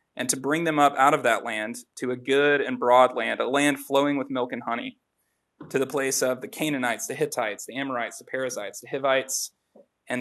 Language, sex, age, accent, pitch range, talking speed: English, male, 30-49, American, 125-150 Hz, 215 wpm